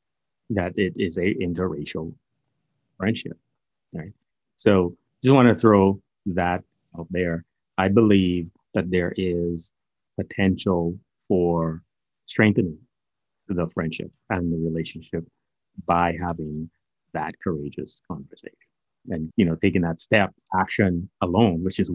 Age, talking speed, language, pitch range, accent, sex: 30-49, 120 wpm, English, 85-95 Hz, American, male